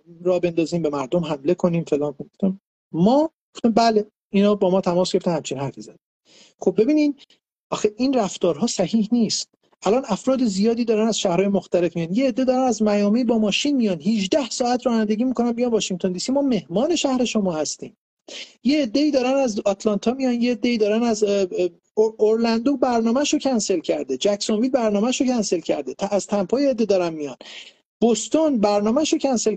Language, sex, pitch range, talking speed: Persian, male, 175-225 Hz, 165 wpm